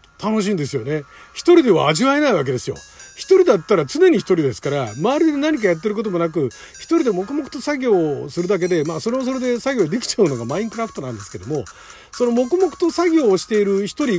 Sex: male